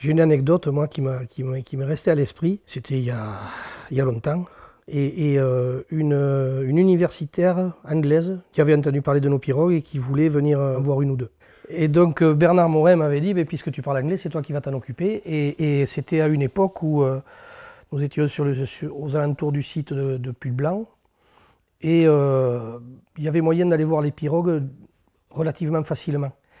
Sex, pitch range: male, 135-160 Hz